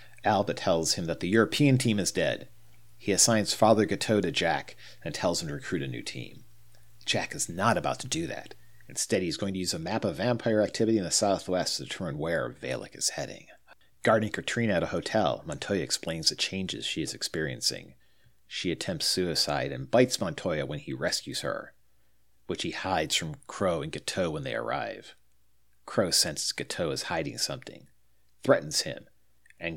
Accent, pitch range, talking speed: American, 95-115 Hz, 180 wpm